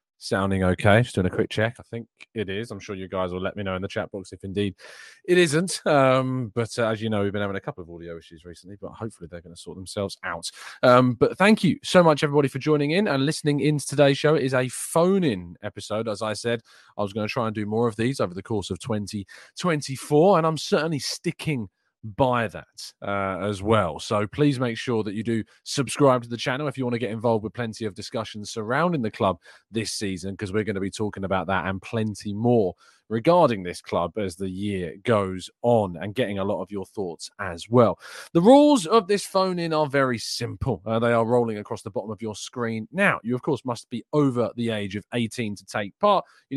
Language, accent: English, British